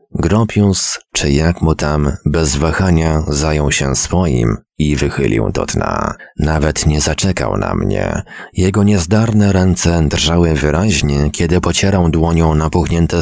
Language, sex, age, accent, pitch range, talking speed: Polish, male, 30-49, native, 80-95 Hz, 125 wpm